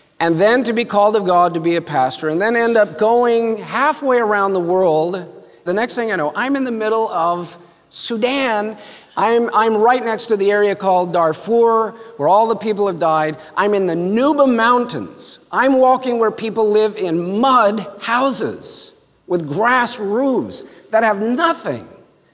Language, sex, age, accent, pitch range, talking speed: English, male, 50-69, American, 185-250 Hz, 175 wpm